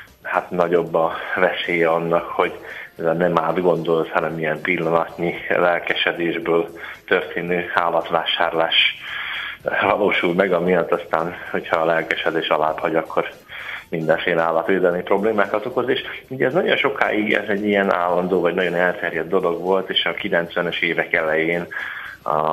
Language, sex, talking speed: Hungarian, male, 135 wpm